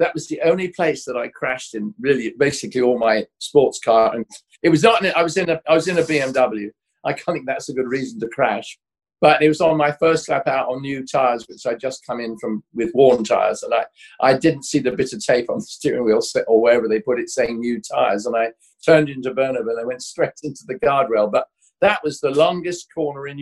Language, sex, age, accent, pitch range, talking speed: English, male, 50-69, British, 125-165 Hz, 250 wpm